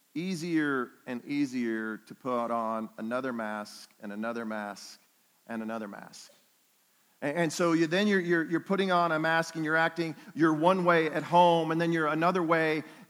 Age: 40-59